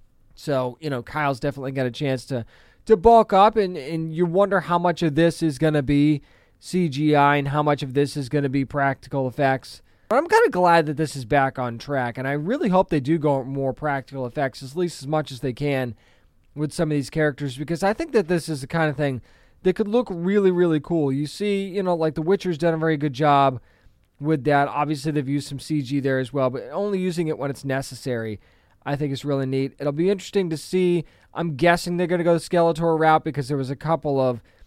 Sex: male